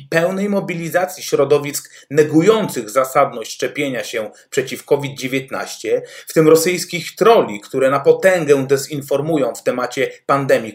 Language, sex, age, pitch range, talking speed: Polish, male, 30-49, 140-185 Hz, 110 wpm